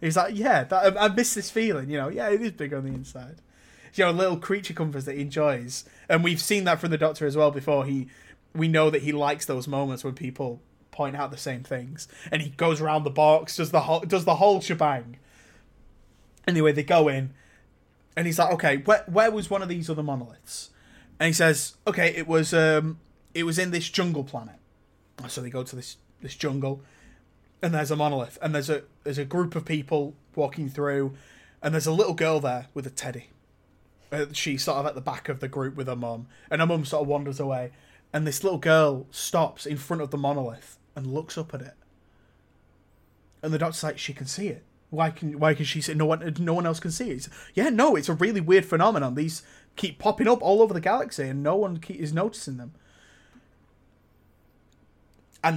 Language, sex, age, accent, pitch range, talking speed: English, male, 20-39, British, 135-165 Hz, 220 wpm